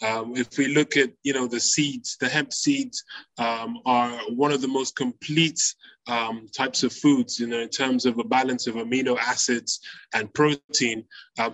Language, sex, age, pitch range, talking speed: English, male, 20-39, 125-155 Hz, 185 wpm